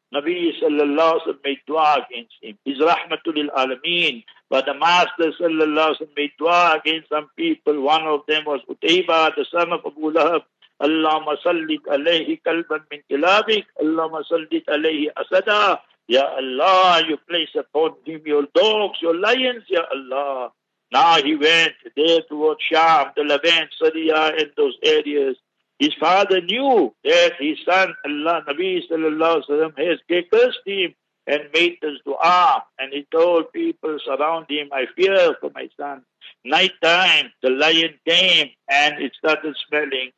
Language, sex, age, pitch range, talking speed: English, male, 60-79, 150-225 Hz, 155 wpm